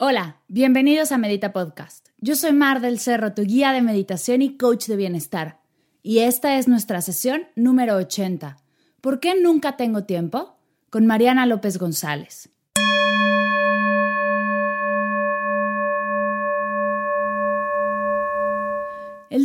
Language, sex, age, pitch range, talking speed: Spanish, female, 20-39, 180-255 Hz, 110 wpm